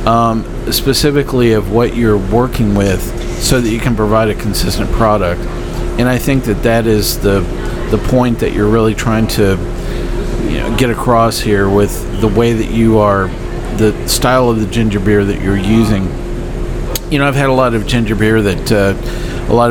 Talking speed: 190 wpm